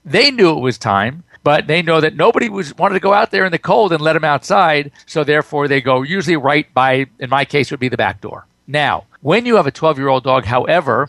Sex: male